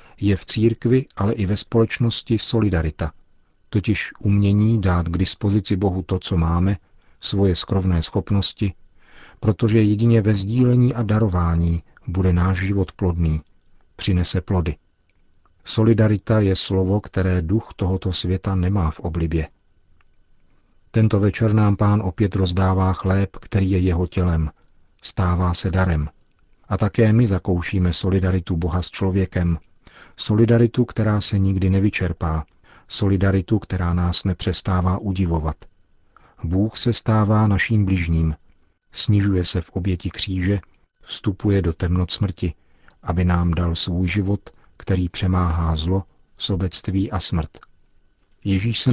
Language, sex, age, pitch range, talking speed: Czech, male, 50-69, 85-105 Hz, 125 wpm